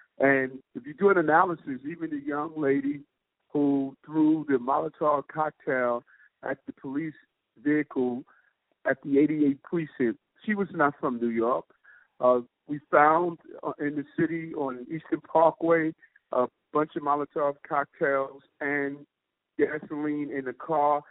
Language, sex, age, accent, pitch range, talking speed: English, male, 50-69, American, 135-165 Hz, 140 wpm